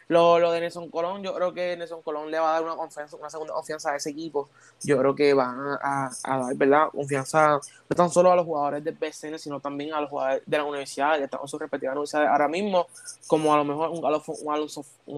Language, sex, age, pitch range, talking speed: Spanish, male, 20-39, 145-170 Hz, 245 wpm